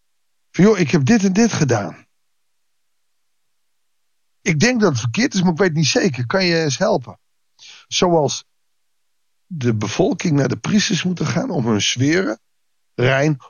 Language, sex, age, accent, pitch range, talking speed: Dutch, male, 60-79, Dutch, 125-180 Hz, 160 wpm